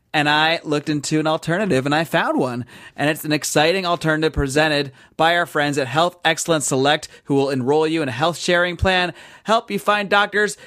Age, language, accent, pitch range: 30-49, English, American, 150-205 Hz